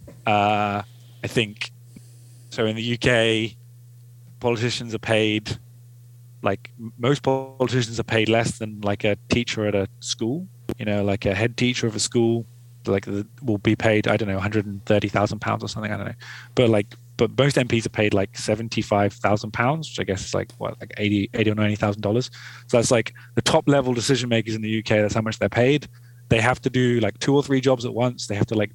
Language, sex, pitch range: English, male, 110-125 Hz